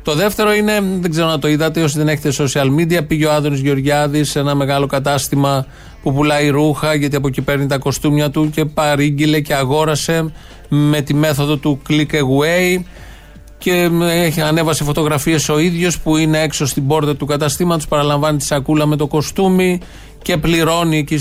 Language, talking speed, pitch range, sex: Greek, 175 wpm, 130-160 Hz, male